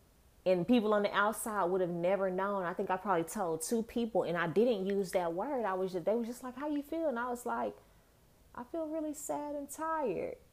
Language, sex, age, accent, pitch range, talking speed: English, female, 20-39, American, 165-205 Hz, 240 wpm